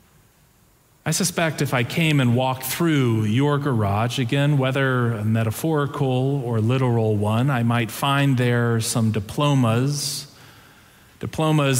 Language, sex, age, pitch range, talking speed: English, male, 40-59, 120-150 Hz, 120 wpm